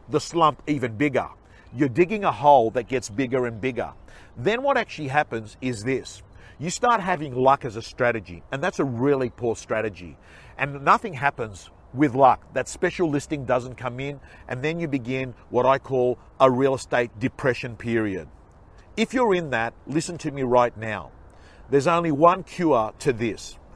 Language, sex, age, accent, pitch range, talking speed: English, male, 50-69, Australian, 120-165 Hz, 175 wpm